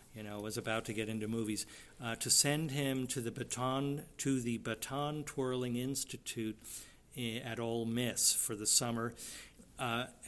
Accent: American